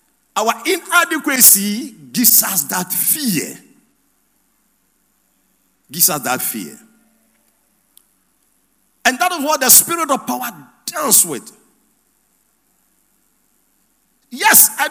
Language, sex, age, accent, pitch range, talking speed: English, male, 50-69, Nigerian, 210-310 Hz, 90 wpm